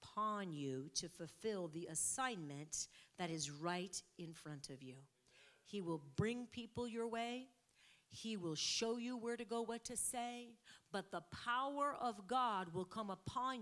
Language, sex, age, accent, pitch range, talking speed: English, female, 40-59, American, 165-220 Hz, 160 wpm